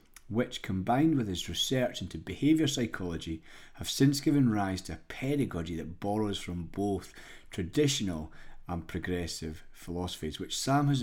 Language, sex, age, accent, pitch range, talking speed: English, male, 30-49, British, 90-115 Hz, 140 wpm